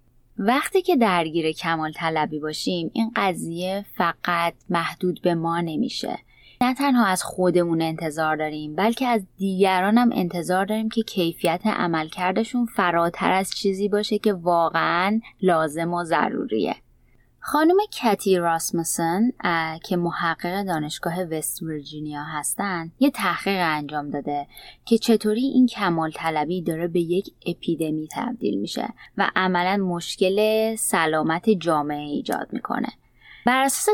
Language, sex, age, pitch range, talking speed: Persian, female, 20-39, 165-215 Hz, 120 wpm